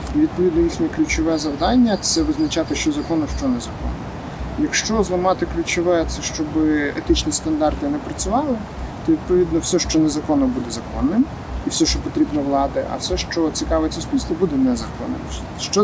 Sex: male